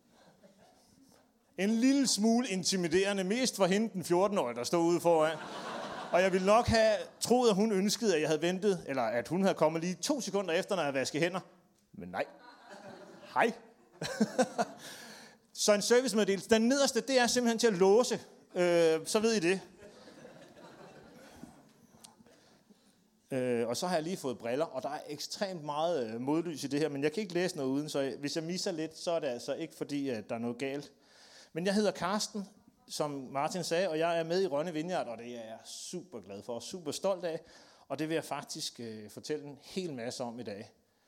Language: Danish